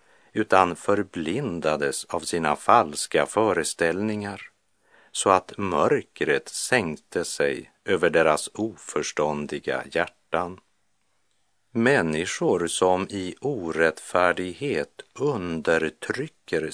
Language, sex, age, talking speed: Czech, male, 60-79, 70 wpm